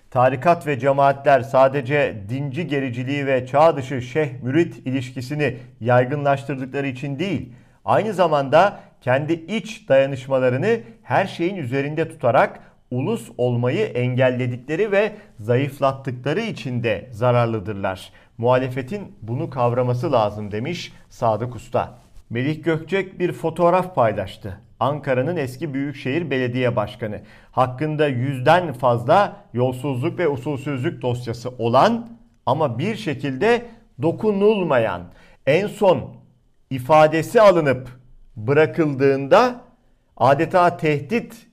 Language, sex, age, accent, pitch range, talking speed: Turkish, male, 50-69, native, 125-165 Hz, 95 wpm